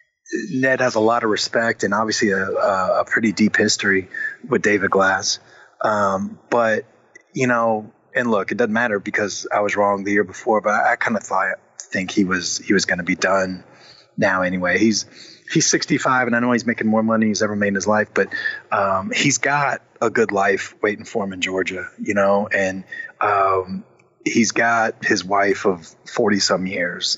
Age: 30-49